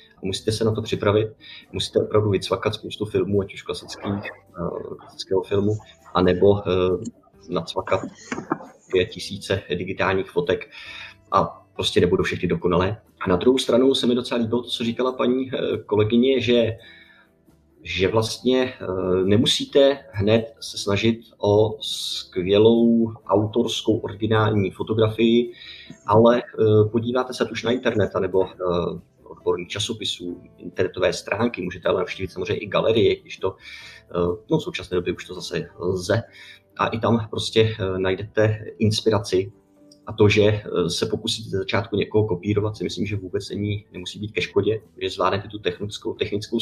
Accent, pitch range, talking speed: native, 95-115 Hz, 140 wpm